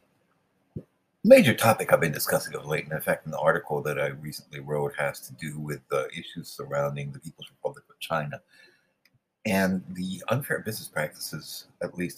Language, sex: English, male